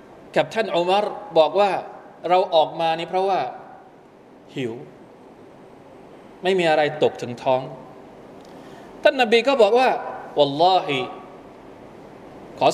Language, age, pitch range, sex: Thai, 20-39, 145-195 Hz, male